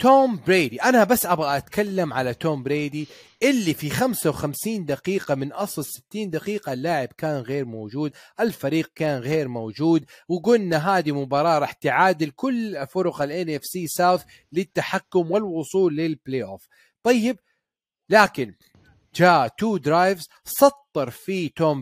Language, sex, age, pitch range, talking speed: Arabic, male, 30-49, 145-195 Hz, 135 wpm